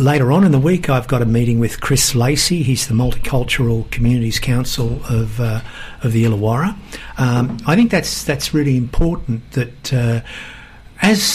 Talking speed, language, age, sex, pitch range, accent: 170 wpm, English, 50-69, male, 115-135 Hz, Australian